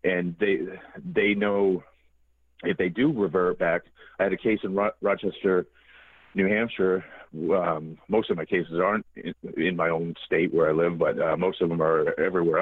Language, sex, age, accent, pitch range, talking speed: English, male, 40-59, American, 85-95 Hz, 180 wpm